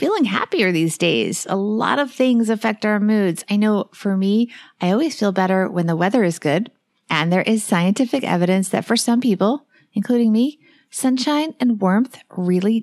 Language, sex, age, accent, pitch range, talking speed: English, female, 30-49, American, 190-245 Hz, 180 wpm